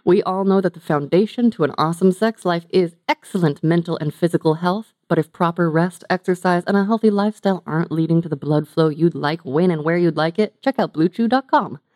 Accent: American